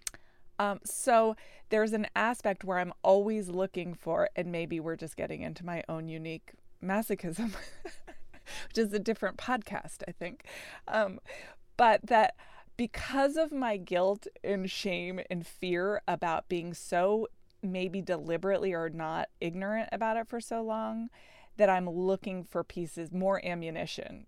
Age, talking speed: 20-39, 145 wpm